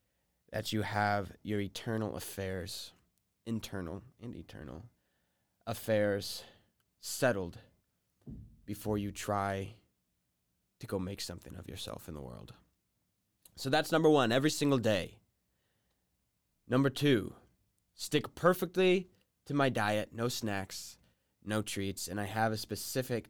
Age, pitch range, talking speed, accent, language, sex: 20-39, 100-145 Hz, 120 wpm, American, English, male